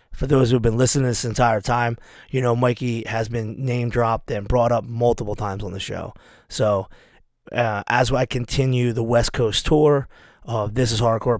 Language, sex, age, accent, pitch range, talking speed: English, male, 30-49, American, 110-130 Hz, 190 wpm